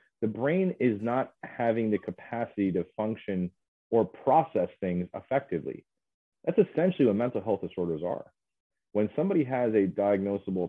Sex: male